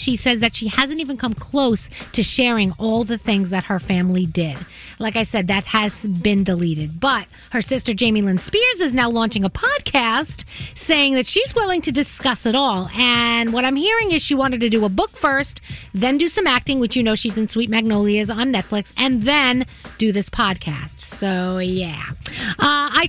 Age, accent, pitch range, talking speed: 30-49, American, 225-300 Hz, 200 wpm